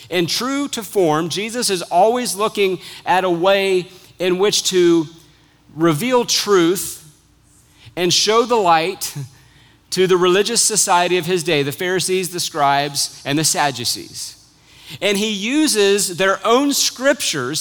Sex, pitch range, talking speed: male, 150-205 Hz, 135 wpm